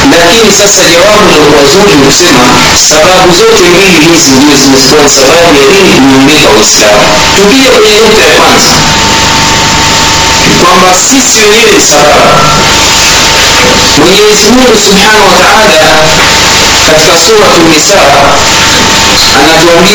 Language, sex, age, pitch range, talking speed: Swahili, male, 50-69, 150-195 Hz, 60 wpm